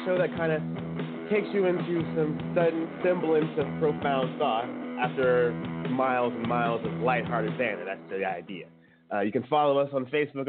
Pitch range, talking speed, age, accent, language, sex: 115-160 Hz, 170 wpm, 20-39, American, English, male